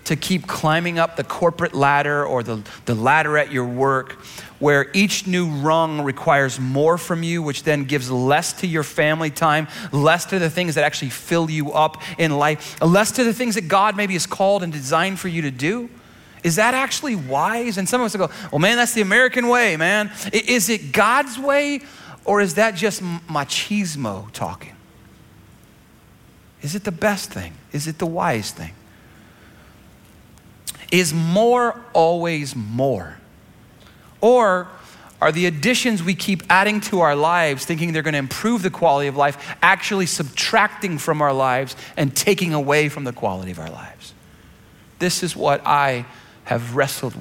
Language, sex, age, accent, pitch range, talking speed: English, male, 30-49, American, 140-195 Hz, 170 wpm